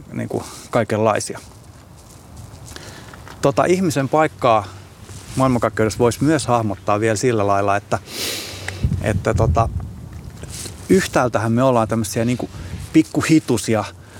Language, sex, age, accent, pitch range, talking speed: Finnish, male, 20-39, native, 100-120 Hz, 90 wpm